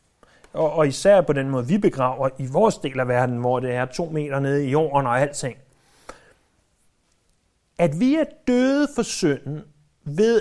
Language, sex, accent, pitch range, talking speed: Danish, male, native, 140-200 Hz, 165 wpm